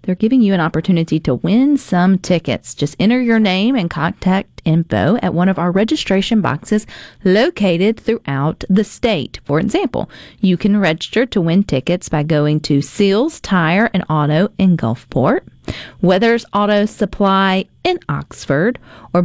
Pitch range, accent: 160-215 Hz, American